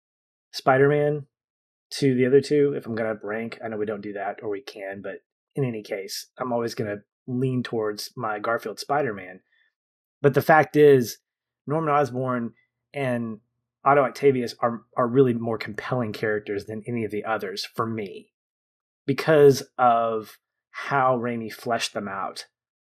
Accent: American